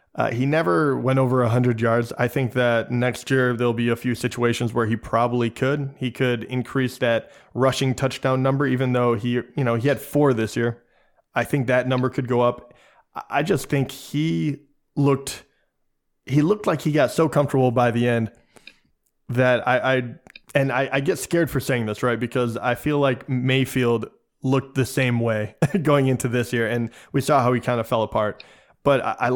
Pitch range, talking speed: 120-135 Hz, 195 wpm